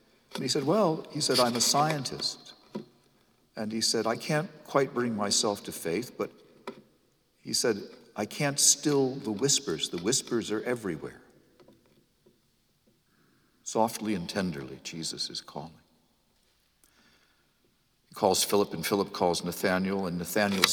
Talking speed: 135 wpm